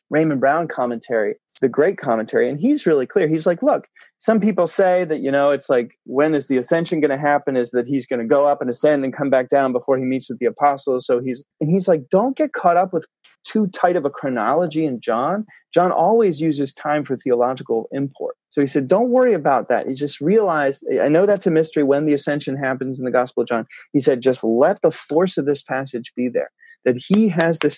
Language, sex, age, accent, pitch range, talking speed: English, male, 30-49, American, 130-180 Hz, 240 wpm